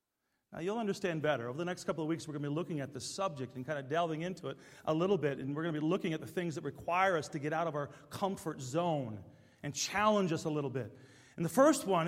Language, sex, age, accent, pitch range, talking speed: English, male, 40-59, American, 145-210 Hz, 280 wpm